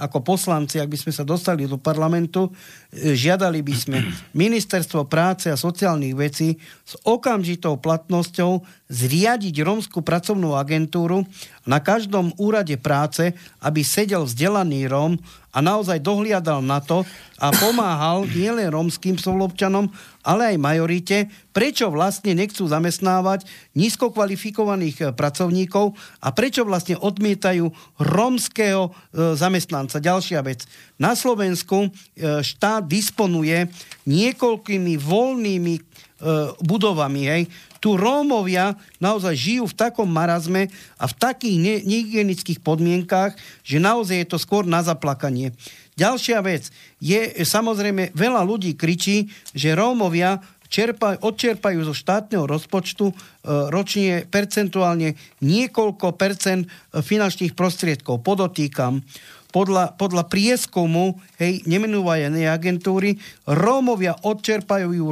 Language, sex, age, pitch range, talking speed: English, male, 50-69, 160-205 Hz, 110 wpm